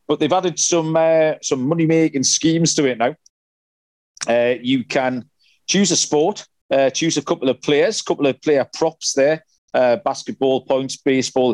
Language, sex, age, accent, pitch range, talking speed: English, male, 40-59, British, 125-150 Hz, 170 wpm